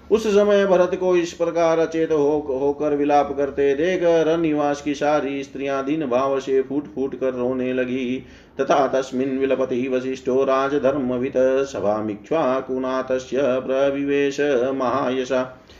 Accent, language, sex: native, Hindi, male